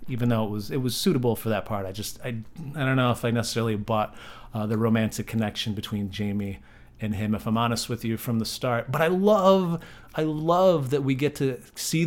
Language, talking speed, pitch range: English, 230 wpm, 110-130 Hz